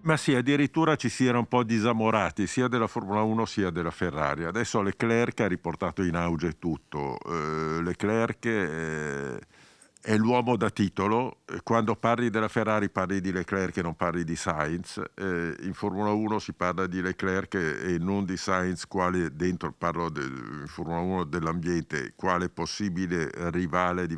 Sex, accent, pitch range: male, native, 90-115 Hz